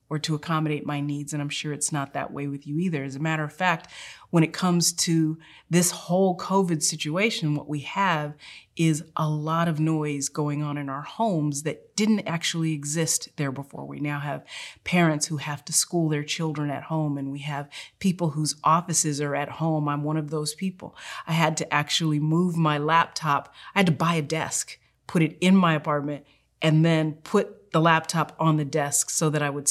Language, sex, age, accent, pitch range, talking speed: English, female, 30-49, American, 150-170 Hz, 210 wpm